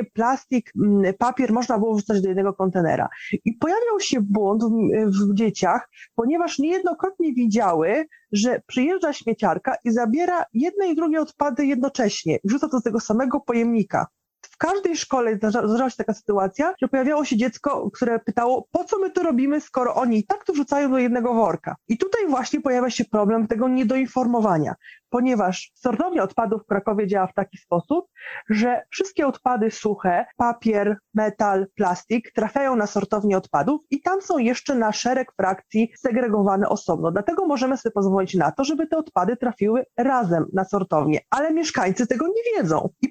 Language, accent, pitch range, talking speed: Polish, native, 205-270 Hz, 160 wpm